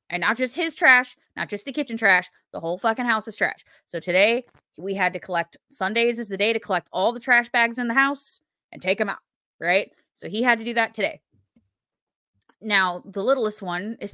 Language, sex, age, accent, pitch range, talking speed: English, female, 20-39, American, 190-240 Hz, 220 wpm